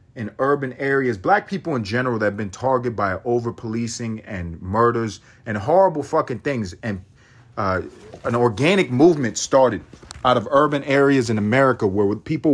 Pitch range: 110-145 Hz